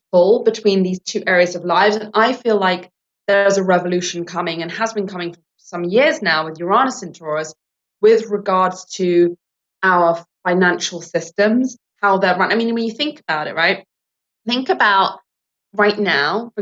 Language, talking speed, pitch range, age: English, 175 wpm, 175-215 Hz, 20-39